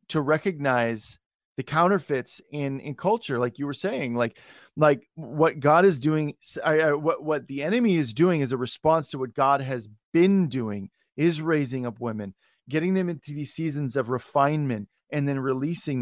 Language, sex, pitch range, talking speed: English, male, 135-170 Hz, 170 wpm